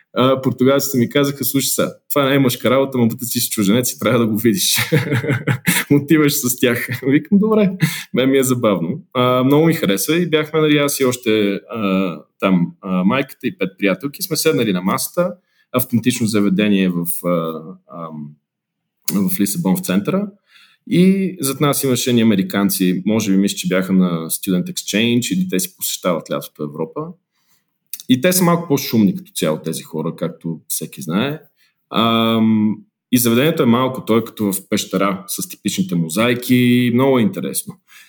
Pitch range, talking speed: 100-145 Hz, 165 wpm